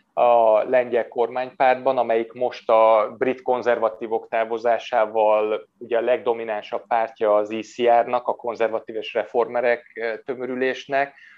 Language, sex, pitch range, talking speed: Hungarian, male, 120-140 Hz, 100 wpm